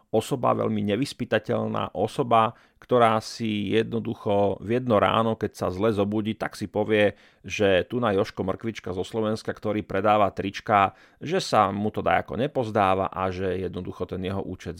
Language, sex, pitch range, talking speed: Slovak, male, 100-115 Hz, 160 wpm